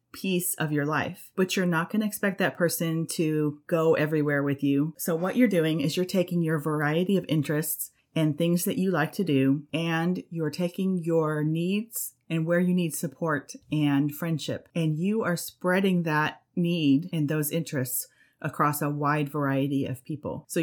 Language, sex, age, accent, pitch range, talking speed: English, female, 30-49, American, 140-170 Hz, 185 wpm